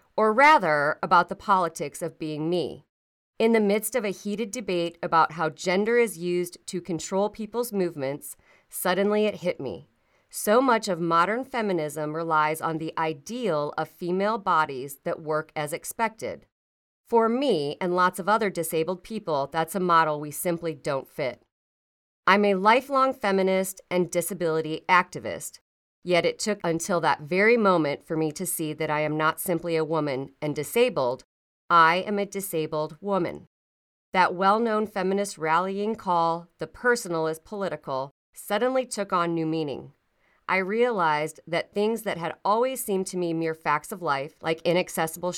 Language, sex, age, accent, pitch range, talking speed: English, female, 40-59, American, 155-195 Hz, 160 wpm